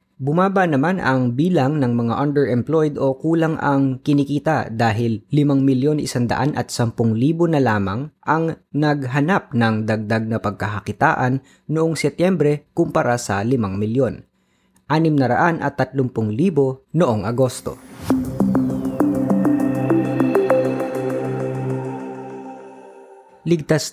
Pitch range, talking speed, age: 110-145 Hz, 100 wpm, 20-39